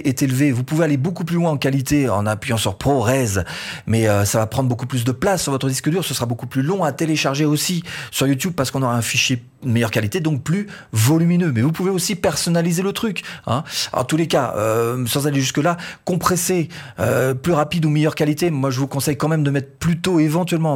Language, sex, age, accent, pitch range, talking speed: French, male, 30-49, French, 125-165 Hz, 235 wpm